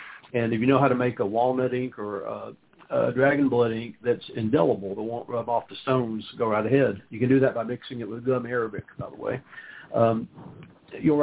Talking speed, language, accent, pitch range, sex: 225 wpm, English, American, 110-130 Hz, male